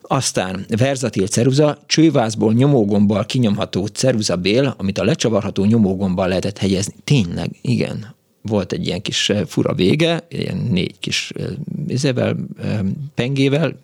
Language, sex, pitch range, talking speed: Hungarian, male, 100-125 Hz, 115 wpm